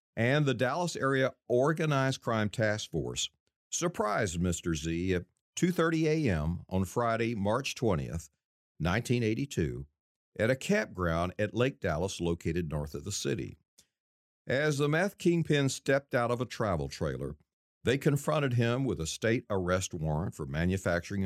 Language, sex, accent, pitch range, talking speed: English, male, American, 85-125 Hz, 140 wpm